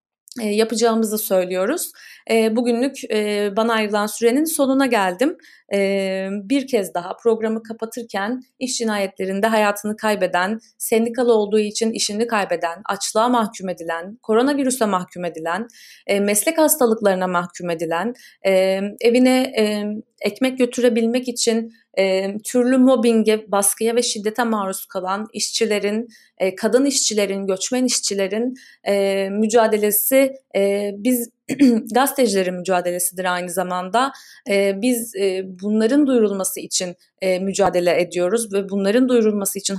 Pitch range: 190-240 Hz